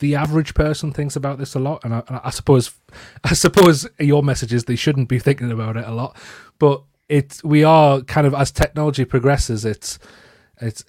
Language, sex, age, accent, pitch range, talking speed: English, male, 30-49, British, 105-130 Hz, 205 wpm